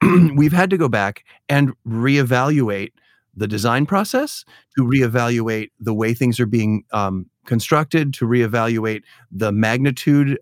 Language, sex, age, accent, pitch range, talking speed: English, male, 40-59, American, 110-135 Hz, 130 wpm